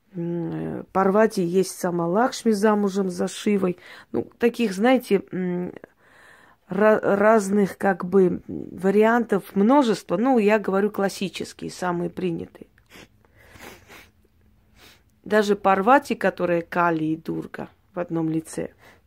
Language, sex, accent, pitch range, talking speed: Russian, female, native, 180-220 Hz, 100 wpm